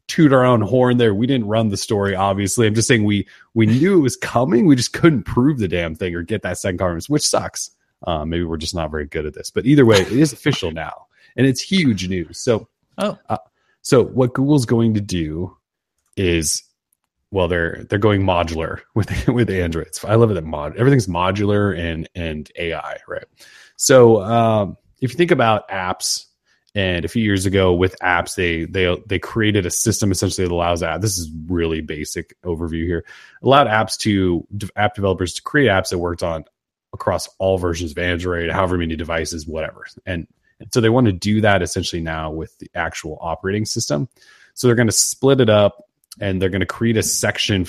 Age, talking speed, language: 30-49, 205 wpm, English